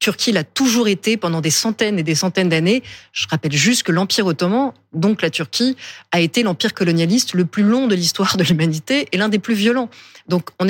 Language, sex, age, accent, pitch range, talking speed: French, female, 30-49, French, 170-220 Hz, 215 wpm